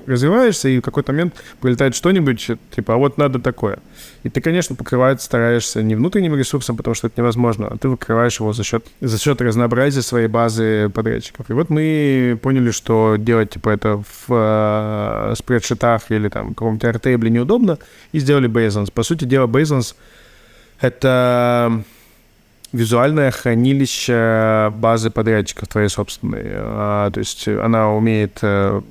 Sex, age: male, 20-39